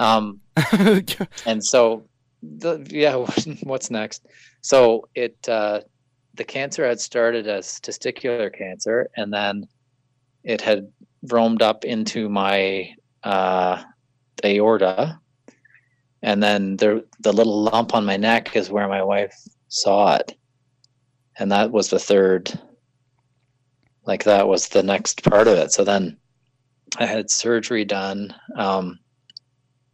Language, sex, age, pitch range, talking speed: English, male, 30-49, 100-130 Hz, 125 wpm